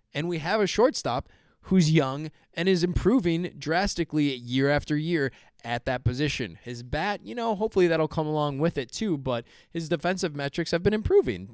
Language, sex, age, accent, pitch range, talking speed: English, male, 20-39, American, 120-165 Hz, 180 wpm